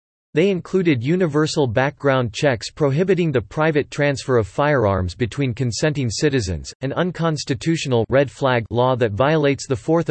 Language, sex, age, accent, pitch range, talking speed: English, male, 40-59, American, 115-150 Hz, 135 wpm